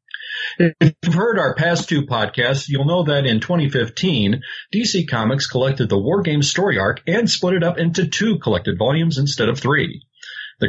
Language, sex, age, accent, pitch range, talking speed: English, male, 40-59, American, 125-180 Hz, 180 wpm